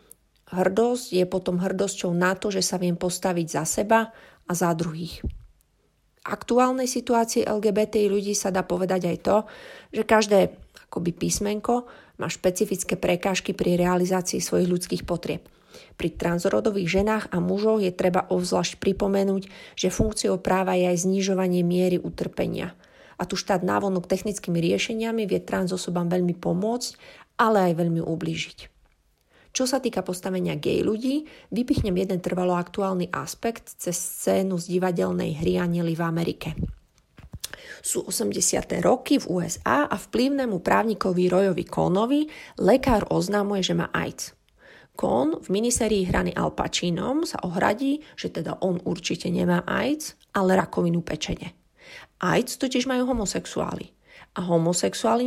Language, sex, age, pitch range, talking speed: Slovak, female, 30-49, 180-220 Hz, 135 wpm